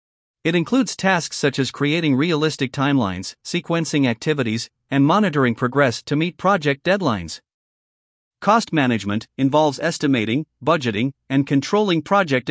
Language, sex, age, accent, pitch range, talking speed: English, male, 50-69, American, 130-175 Hz, 120 wpm